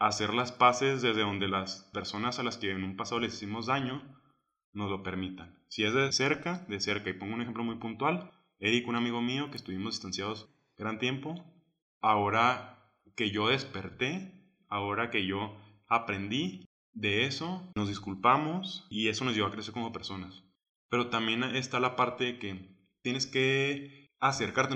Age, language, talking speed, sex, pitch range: 20-39, Spanish, 170 wpm, male, 95-125 Hz